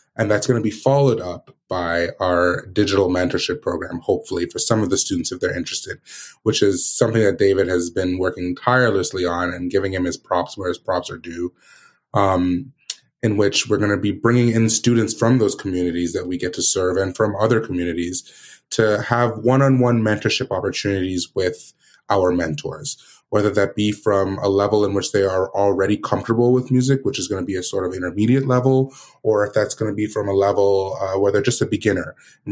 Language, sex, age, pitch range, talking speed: English, male, 30-49, 95-110 Hz, 205 wpm